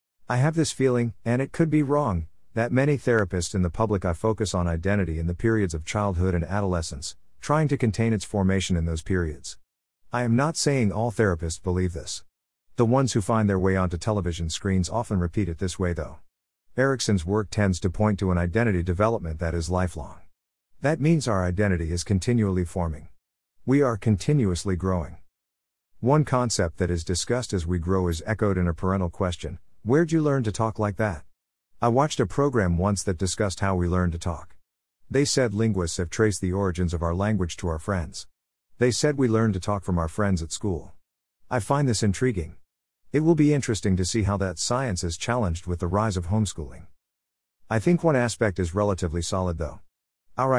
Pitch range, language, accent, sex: 85-115 Hz, English, American, male